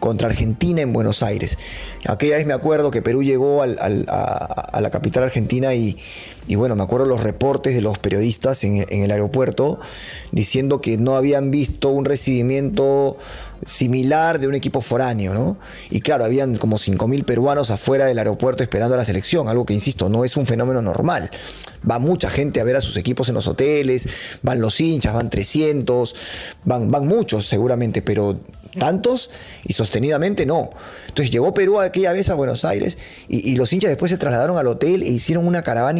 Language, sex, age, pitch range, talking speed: English, male, 30-49, 110-145 Hz, 185 wpm